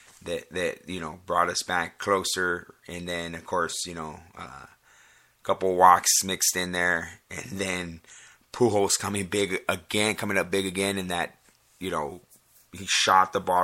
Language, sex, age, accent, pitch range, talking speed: English, male, 30-49, American, 85-110 Hz, 170 wpm